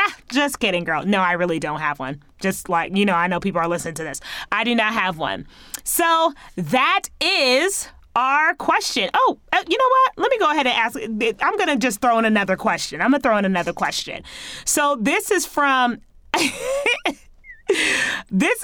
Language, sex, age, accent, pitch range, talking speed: English, female, 30-49, American, 200-295 Hz, 185 wpm